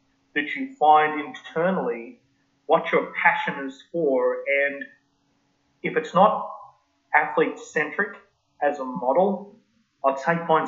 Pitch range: 135-175 Hz